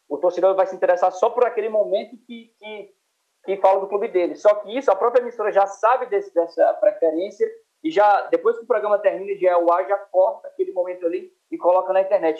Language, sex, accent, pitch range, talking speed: Portuguese, male, Brazilian, 165-230 Hz, 220 wpm